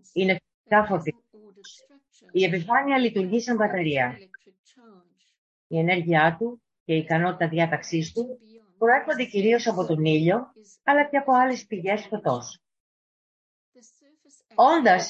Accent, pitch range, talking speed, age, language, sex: Greek, 165-230 Hz, 110 wpm, 30-49, English, female